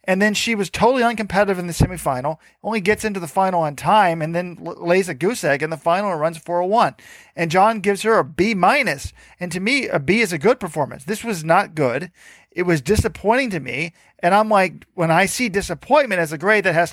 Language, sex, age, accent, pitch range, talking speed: English, male, 40-59, American, 160-210 Hz, 230 wpm